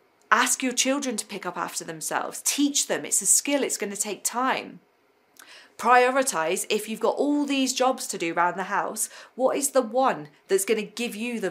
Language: English